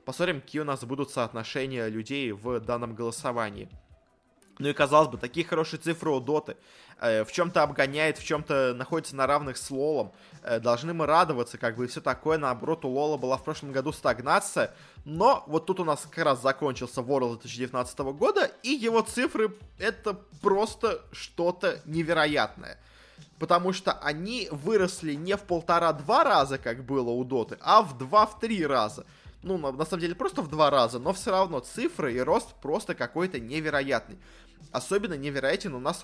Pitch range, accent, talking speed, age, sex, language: 130-175 Hz, native, 170 wpm, 20-39, male, Russian